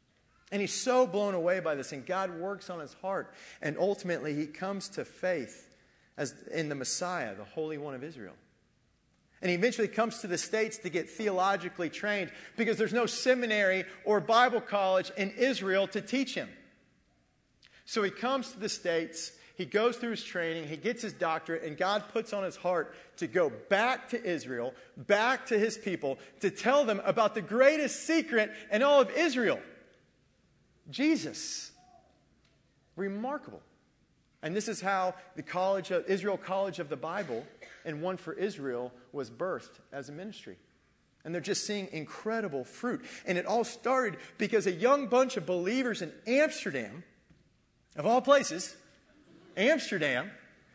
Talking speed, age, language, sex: 160 wpm, 40-59, English, male